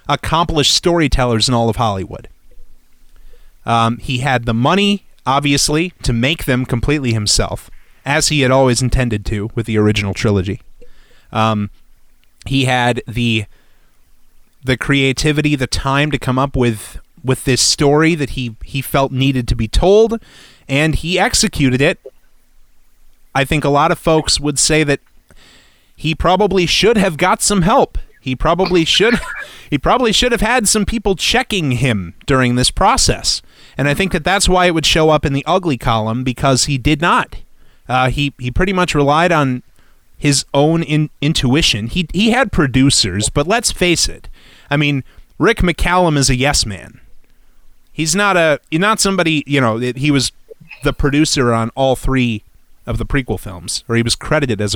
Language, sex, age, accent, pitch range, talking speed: English, male, 30-49, American, 115-160 Hz, 170 wpm